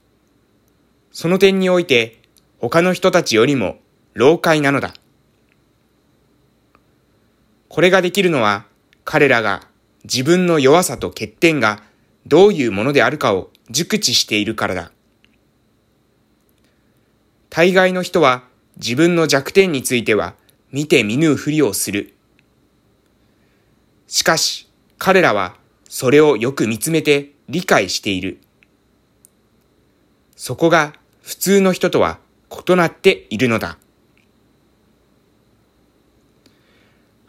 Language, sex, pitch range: Japanese, male, 105-165 Hz